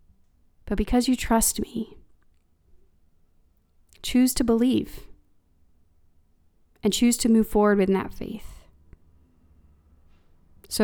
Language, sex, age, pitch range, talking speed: English, female, 30-49, 195-240 Hz, 95 wpm